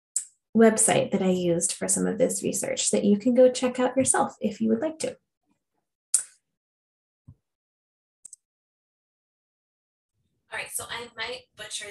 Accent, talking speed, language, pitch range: American, 135 wpm, English, 200-250 Hz